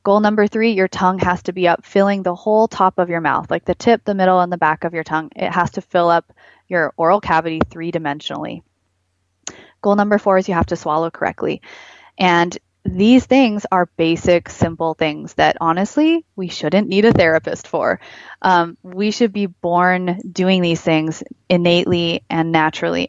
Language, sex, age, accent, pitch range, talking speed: English, female, 20-39, American, 165-195 Hz, 185 wpm